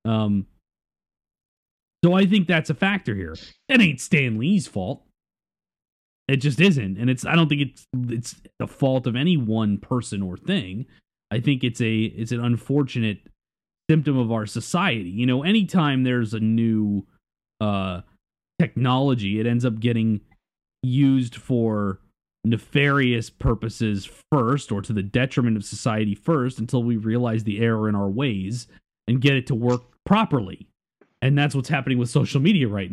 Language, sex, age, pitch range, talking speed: English, male, 30-49, 110-140 Hz, 160 wpm